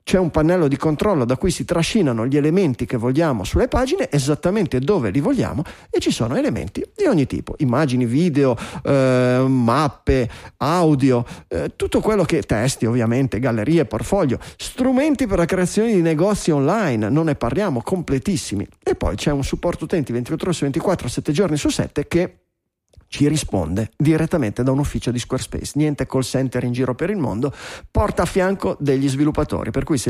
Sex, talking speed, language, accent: male, 175 wpm, Italian, native